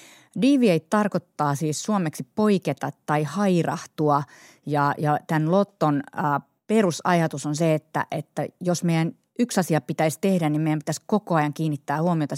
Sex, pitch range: female, 150-180 Hz